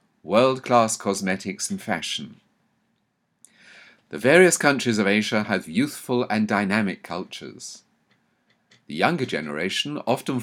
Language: English